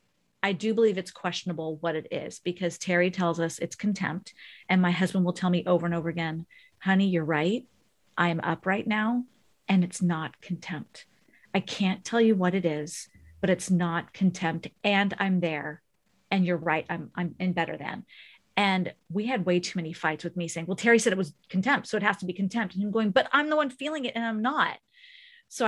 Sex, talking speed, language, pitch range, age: female, 215 wpm, English, 175-220 Hz, 40-59